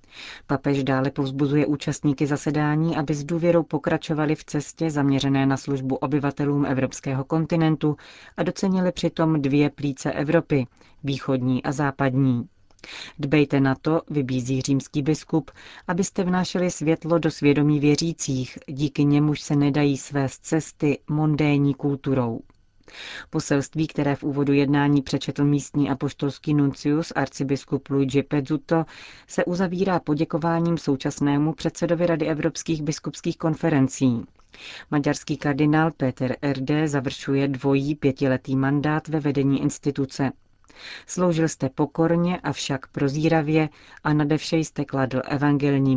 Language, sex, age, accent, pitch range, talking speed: Czech, female, 30-49, native, 135-155 Hz, 115 wpm